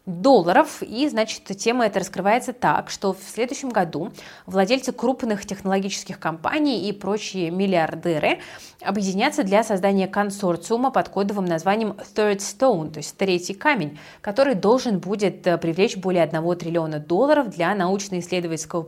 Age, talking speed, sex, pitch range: 20-39, 130 wpm, female, 170-225 Hz